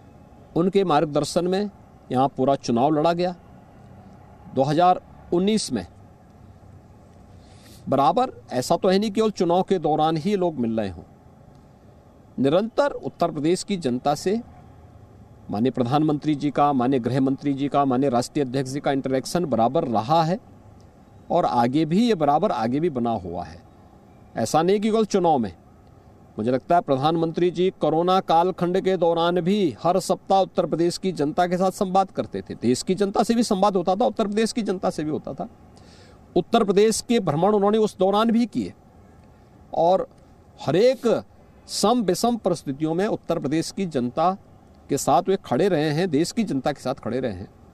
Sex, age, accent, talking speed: male, 50-69, Indian, 150 wpm